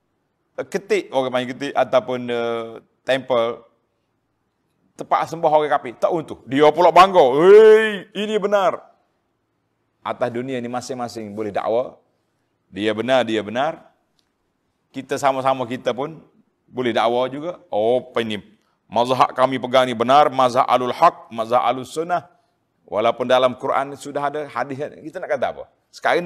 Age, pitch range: 40-59, 115-155 Hz